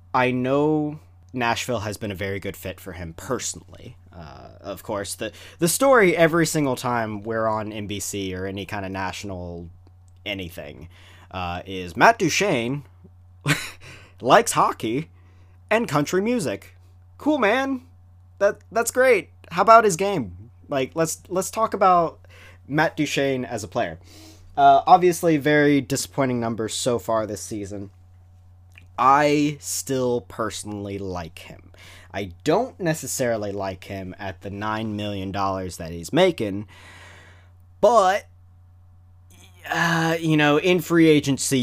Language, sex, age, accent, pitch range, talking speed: English, male, 20-39, American, 90-125 Hz, 135 wpm